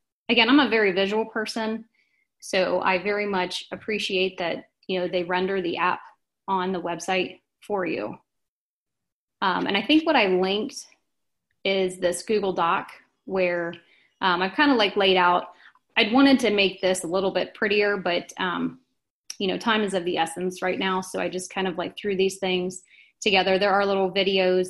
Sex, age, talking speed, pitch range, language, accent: female, 20-39, 185 wpm, 180-210 Hz, English, American